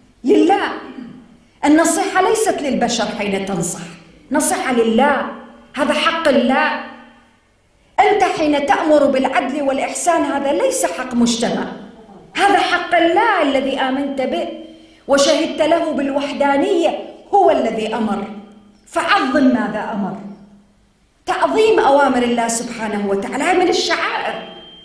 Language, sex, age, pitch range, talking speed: English, female, 40-59, 220-320 Hz, 100 wpm